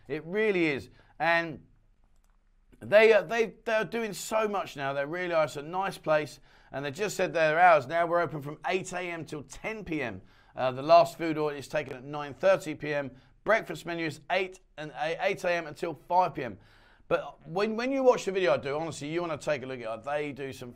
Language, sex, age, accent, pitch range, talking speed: English, male, 40-59, British, 140-180 Hz, 215 wpm